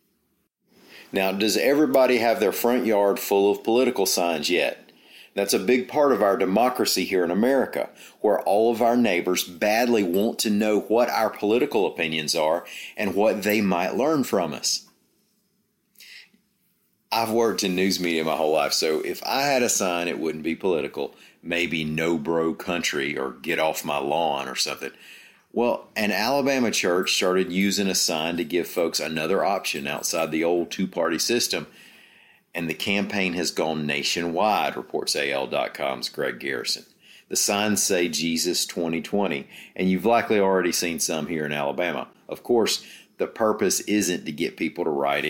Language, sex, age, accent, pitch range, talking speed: English, male, 40-59, American, 80-105 Hz, 165 wpm